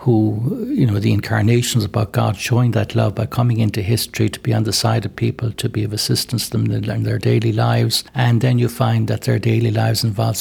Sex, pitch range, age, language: male, 110-125 Hz, 60-79, English